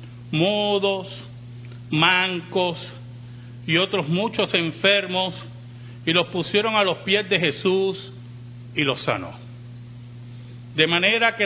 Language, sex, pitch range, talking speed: Spanish, male, 120-180 Hz, 105 wpm